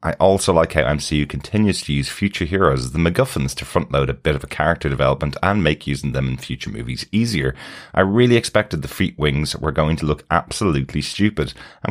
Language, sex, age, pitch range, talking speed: English, male, 30-49, 75-100 Hz, 210 wpm